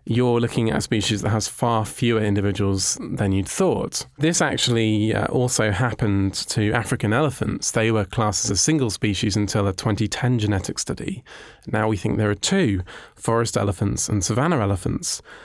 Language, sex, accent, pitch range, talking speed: English, male, British, 105-120 Hz, 170 wpm